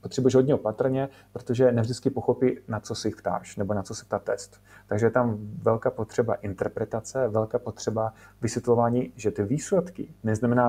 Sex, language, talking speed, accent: male, Czech, 170 wpm, native